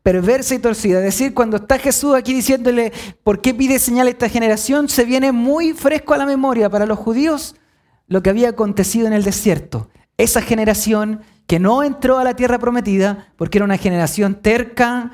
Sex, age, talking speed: male, 30-49, 190 wpm